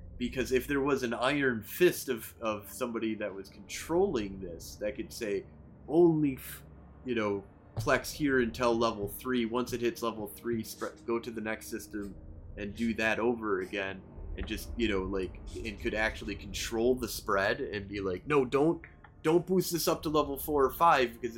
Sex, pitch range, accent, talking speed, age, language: male, 95-120 Hz, American, 190 wpm, 30-49, English